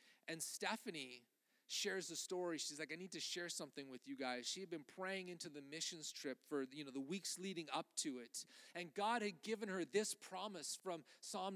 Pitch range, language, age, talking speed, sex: 180-250 Hz, English, 40-59, 215 wpm, male